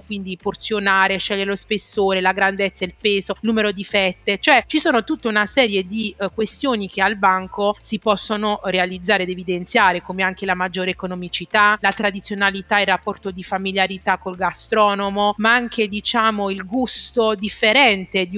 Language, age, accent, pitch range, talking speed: Italian, 30-49, native, 190-220 Hz, 160 wpm